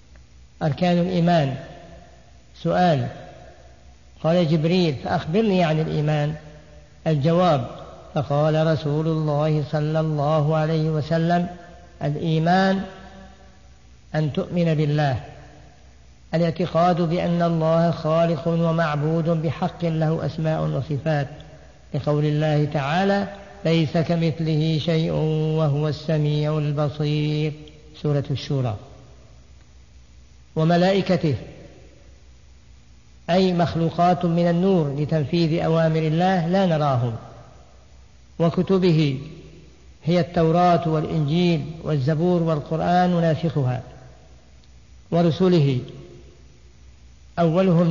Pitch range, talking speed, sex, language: 135-170 Hz, 75 wpm, female, Arabic